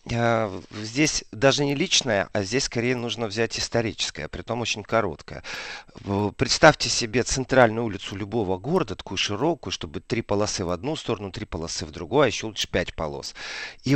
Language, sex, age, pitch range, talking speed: Russian, male, 40-59, 100-135 Hz, 160 wpm